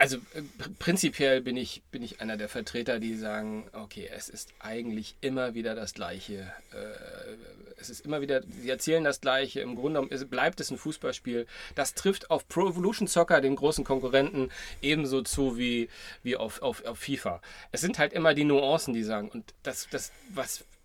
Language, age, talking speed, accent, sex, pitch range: German, 40-59, 180 wpm, German, male, 120-145 Hz